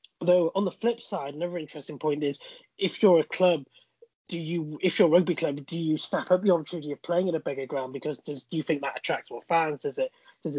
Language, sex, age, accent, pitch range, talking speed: English, male, 20-39, British, 150-185 Hz, 250 wpm